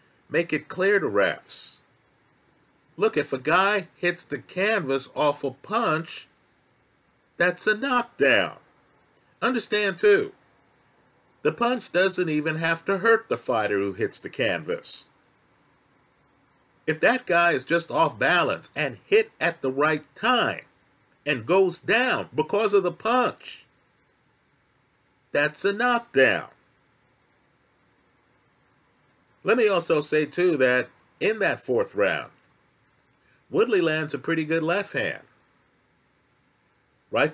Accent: American